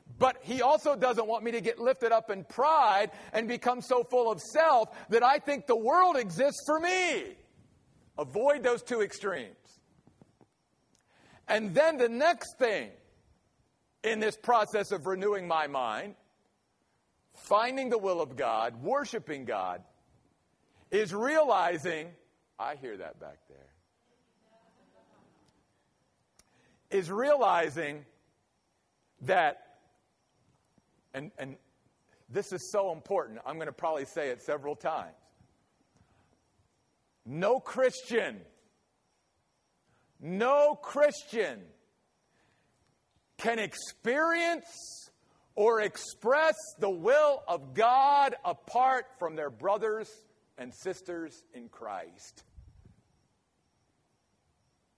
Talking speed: 100 wpm